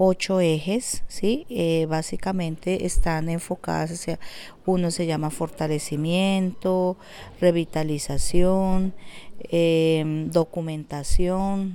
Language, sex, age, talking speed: English, female, 40-59, 65 wpm